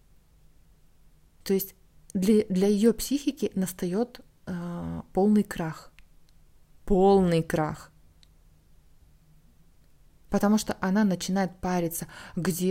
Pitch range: 165-200 Hz